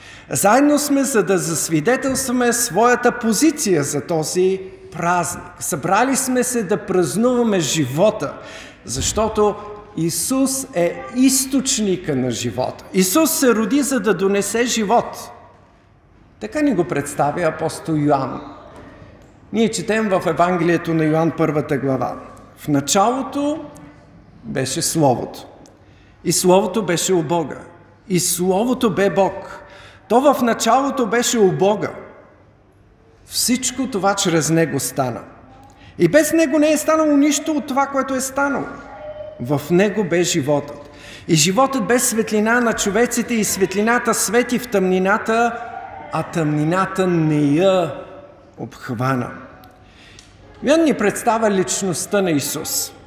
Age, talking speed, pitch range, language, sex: 50-69, 120 wpm, 155-235 Hz, Bulgarian, male